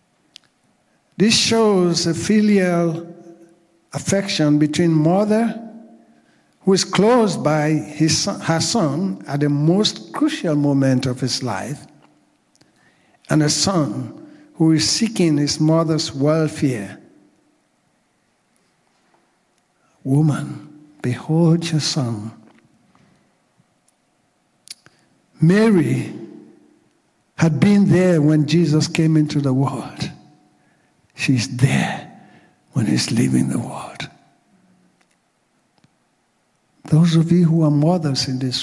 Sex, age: male, 60-79